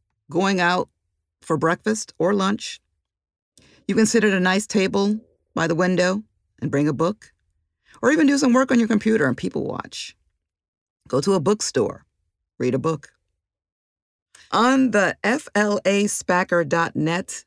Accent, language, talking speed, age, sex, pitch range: American, English, 140 wpm, 50-69, female, 140-215 Hz